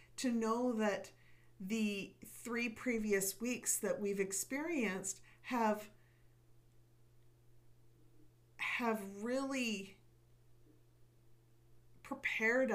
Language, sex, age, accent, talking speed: English, female, 50-69, American, 65 wpm